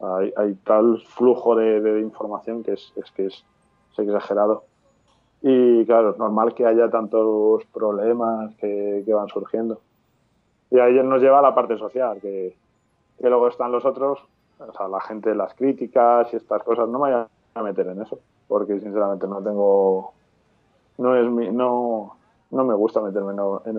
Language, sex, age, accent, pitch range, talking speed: Spanish, male, 20-39, Spanish, 105-125 Hz, 175 wpm